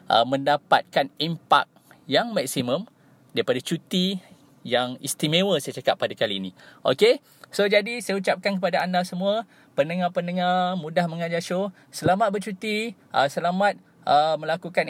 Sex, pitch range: male, 160-200 Hz